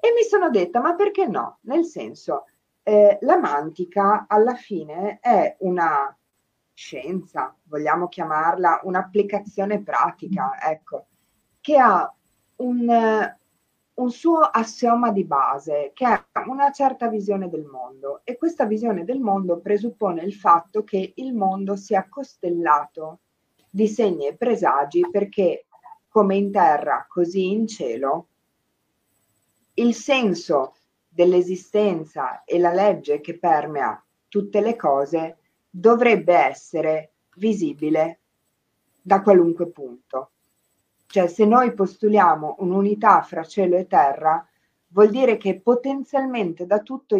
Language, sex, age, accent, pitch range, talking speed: Italian, female, 50-69, native, 170-225 Hz, 120 wpm